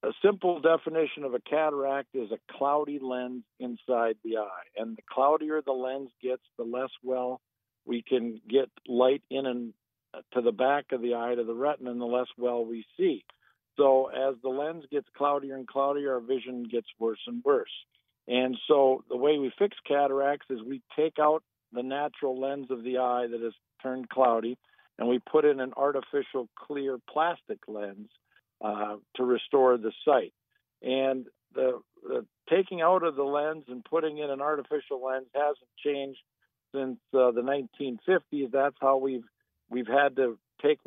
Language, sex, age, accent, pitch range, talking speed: English, male, 50-69, American, 125-145 Hz, 175 wpm